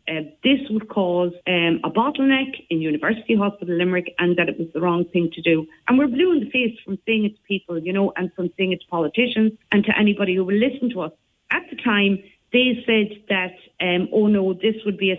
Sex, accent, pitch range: female, Irish, 175-220 Hz